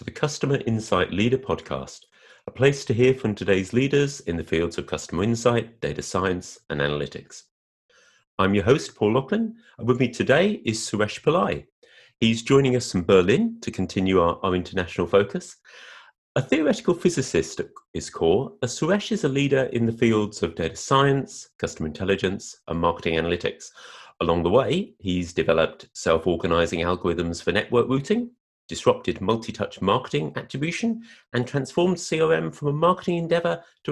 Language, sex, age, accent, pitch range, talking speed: English, male, 30-49, British, 90-150 Hz, 155 wpm